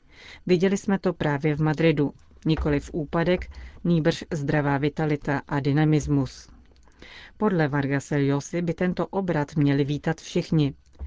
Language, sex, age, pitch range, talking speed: Czech, female, 30-49, 145-170 Hz, 115 wpm